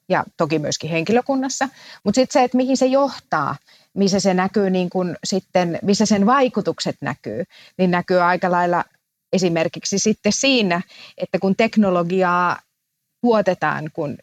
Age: 30-49